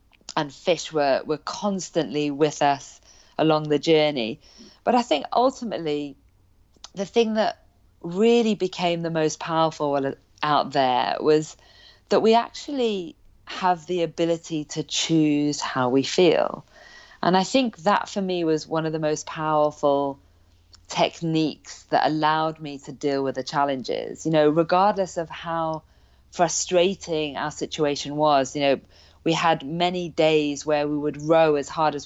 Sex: female